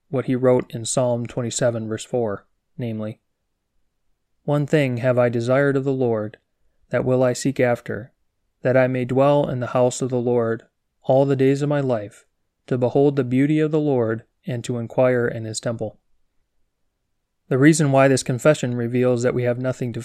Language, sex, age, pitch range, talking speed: English, male, 30-49, 115-135 Hz, 190 wpm